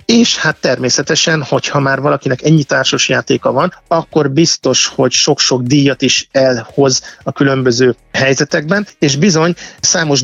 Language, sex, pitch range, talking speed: Hungarian, male, 130-155 Hz, 130 wpm